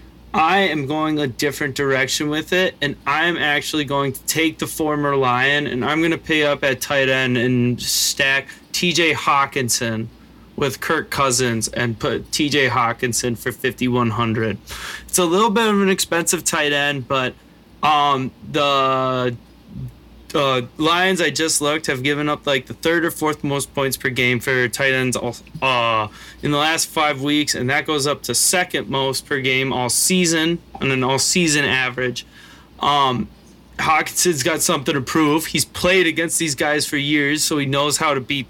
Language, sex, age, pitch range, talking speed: English, male, 20-39, 125-160 Hz, 175 wpm